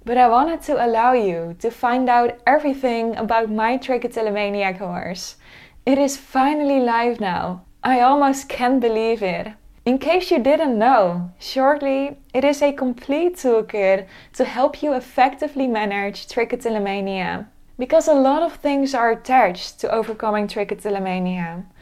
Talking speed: 140 wpm